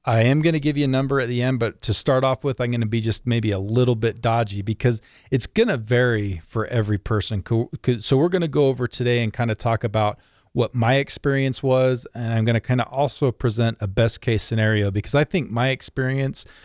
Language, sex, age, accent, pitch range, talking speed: English, male, 40-59, American, 105-125 Hz, 240 wpm